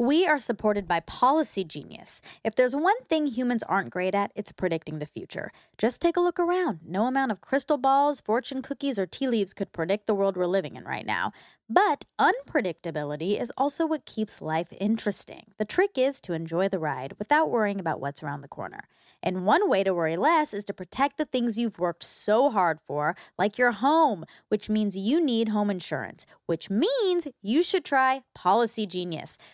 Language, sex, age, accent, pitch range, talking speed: English, female, 20-39, American, 185-270 Hz, 195 wpm